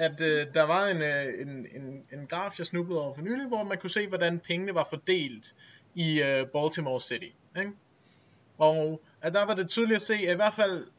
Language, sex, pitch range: Danish, male, 140-175 Hz